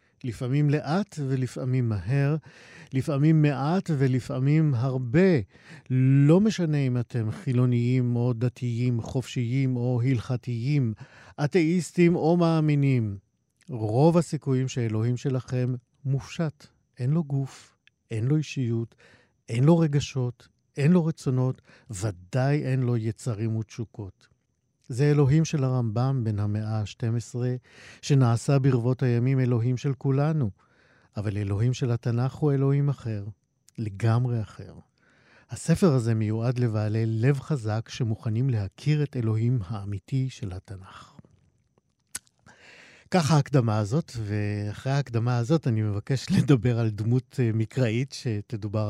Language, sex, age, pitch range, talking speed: Hebrew, male, 50-69, 110-140 Hz, 110 wpm